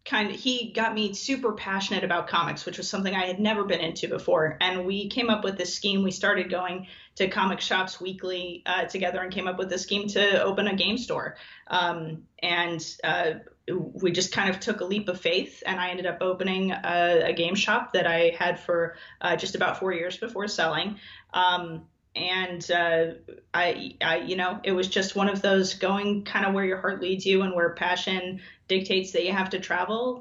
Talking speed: 215 wpm